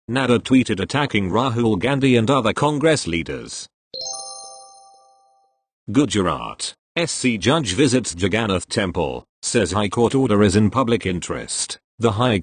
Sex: male